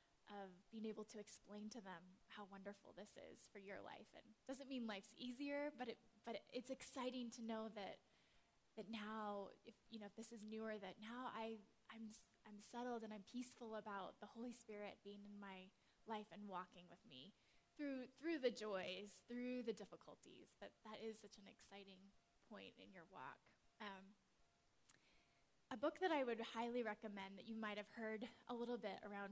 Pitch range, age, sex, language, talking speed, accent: 205-240 Hz, 10-29, female, English, 185 wpm, American